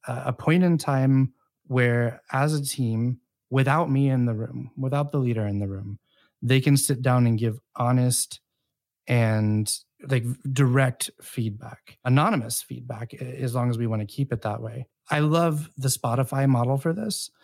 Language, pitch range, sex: English, 115-135 Hz, male